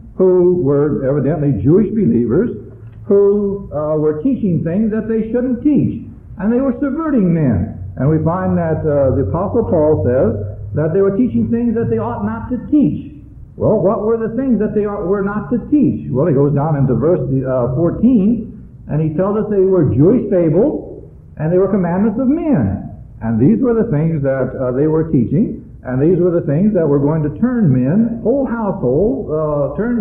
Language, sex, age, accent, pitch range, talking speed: English, male, 60-79, American, 145-220 Hz, 195 wpm